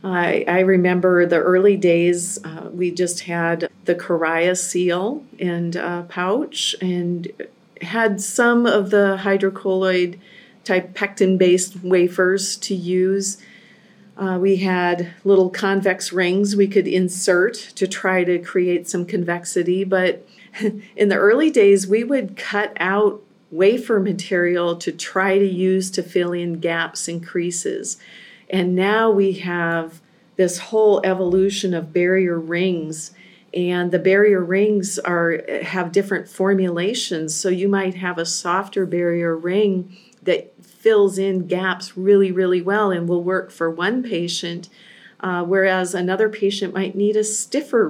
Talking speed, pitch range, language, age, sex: 140 wpm, 175-200 Hz, English, 40-59, female